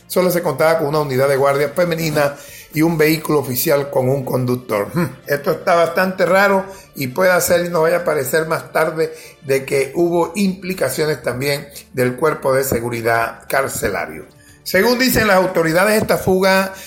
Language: English